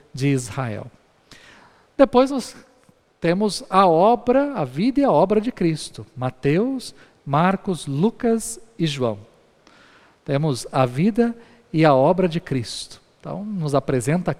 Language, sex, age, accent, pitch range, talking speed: Portuguese, male, 50-69, Brazilian, 140-215 Hz, 125 wpm